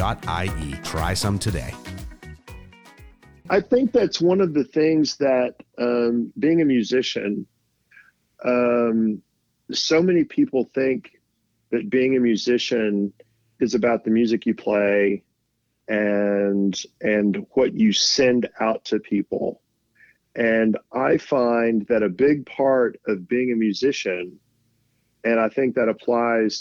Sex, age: male, 40-59